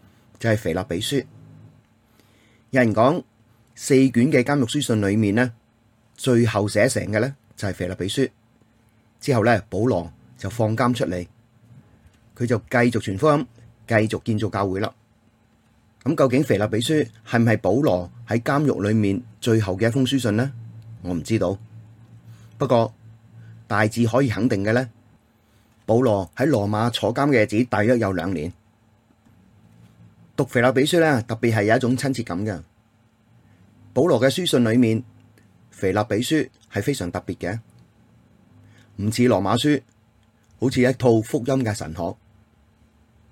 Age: 30-49